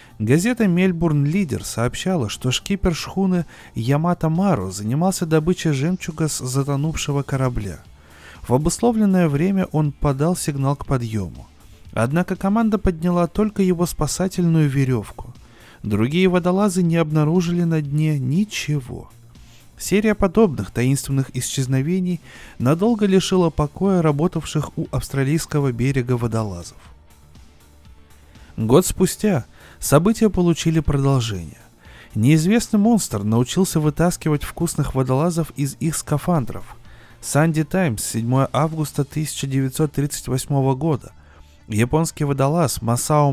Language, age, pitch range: Russian, 30-49, 120-175 Hz